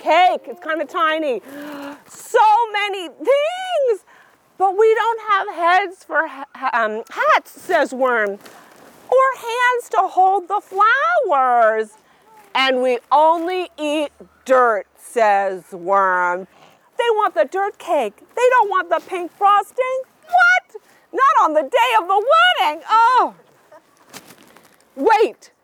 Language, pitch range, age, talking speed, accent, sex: English, 245-390 Hz, 40-59, 125 wpm, American, female